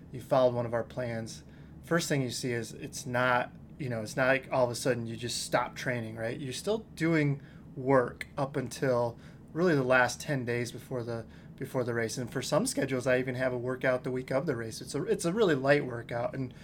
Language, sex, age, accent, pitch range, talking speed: English, male, 20-39, American, 125-145 Hz, 235 wpm